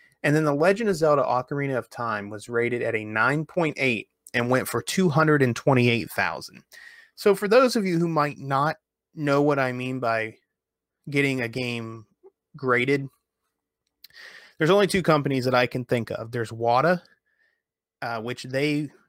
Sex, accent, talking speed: male, American, 155 wpm